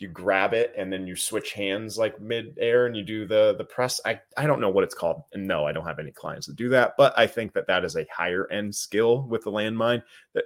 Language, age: English, 30-49